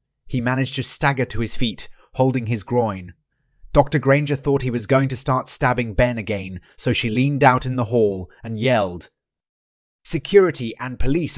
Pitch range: 105-135 Hz